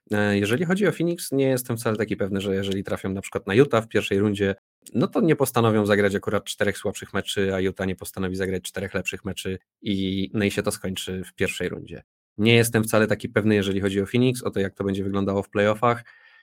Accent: native